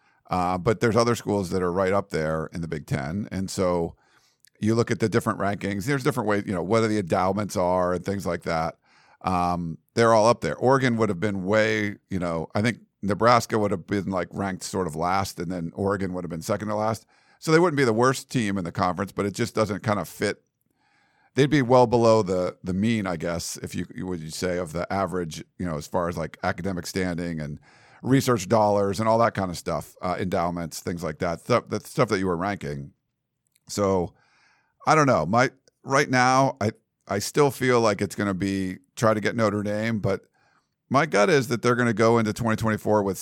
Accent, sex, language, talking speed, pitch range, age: American, male, English, 230 wpm, 90-115 Hz, 50-69